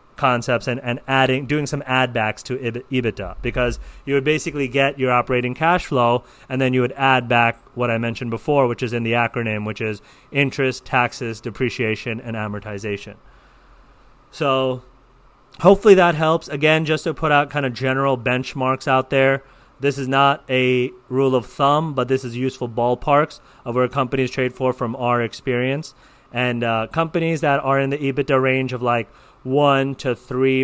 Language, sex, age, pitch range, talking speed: English, male, 30-49, 120-140 Hz, 175 wpm